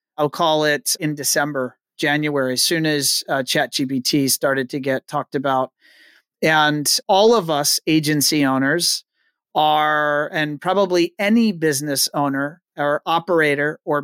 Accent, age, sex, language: American, 40-59, male, English